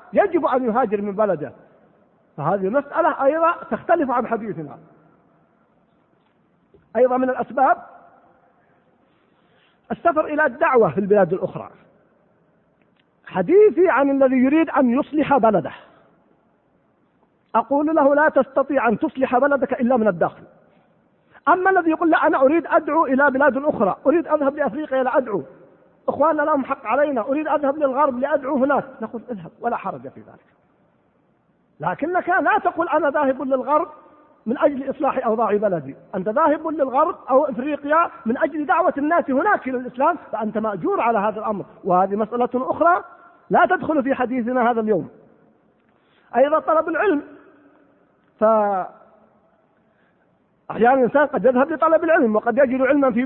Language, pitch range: Arabic, 245-315 Hz